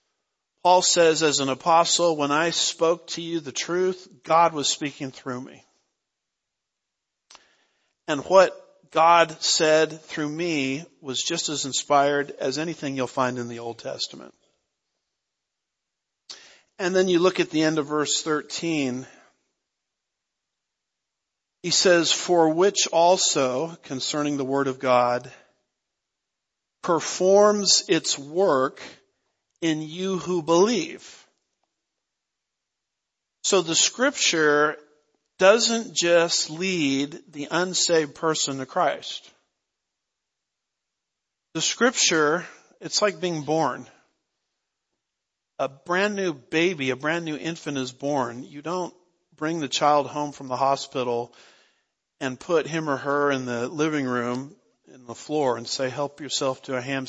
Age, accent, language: 50-69, American, English